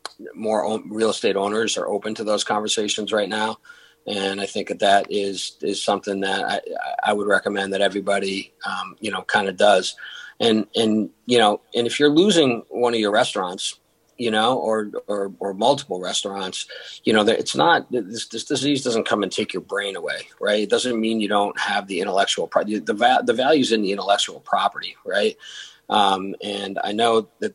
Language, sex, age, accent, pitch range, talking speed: English, male, 40-59, American, 100-115 Hz, 190 wpm